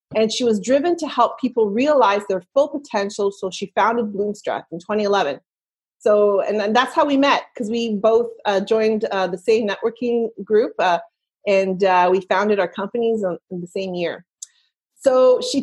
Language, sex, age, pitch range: English, female, 30-49, 200-255 Hz